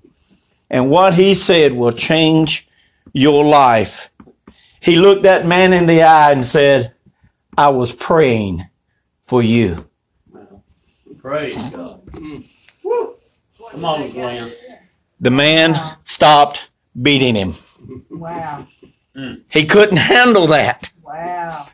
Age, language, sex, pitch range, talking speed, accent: 50-69, English, male, 145-220 Hz, 100 wpm, American